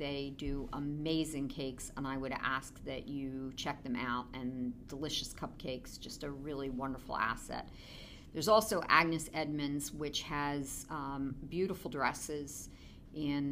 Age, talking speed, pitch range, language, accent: 50-69, 140 wpm, 130-150 Hz, English, American